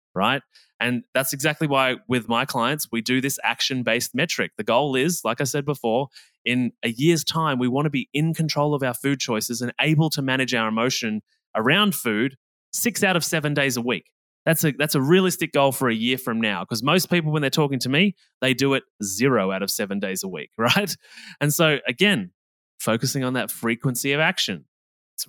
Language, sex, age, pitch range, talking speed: English, male, 20-39, 115-145 Hz, 210 wpm